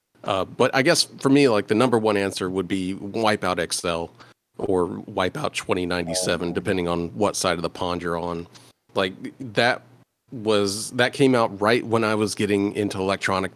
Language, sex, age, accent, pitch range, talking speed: English, male, 40-59, American, 95-110 Hz, 175 wpm